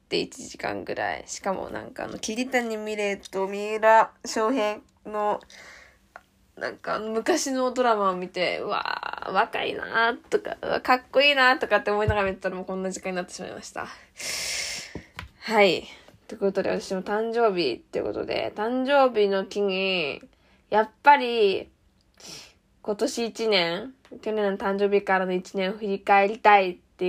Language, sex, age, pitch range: Japanese, female, 10-29, 190-225 Hz